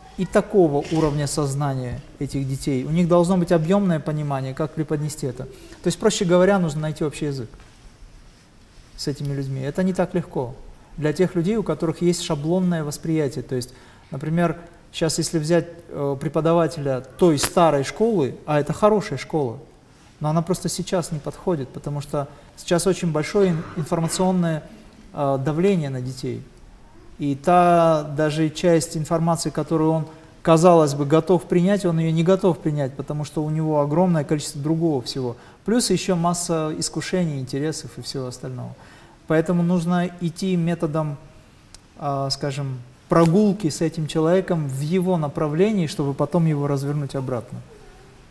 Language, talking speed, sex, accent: Russian, 145 wpm, male, native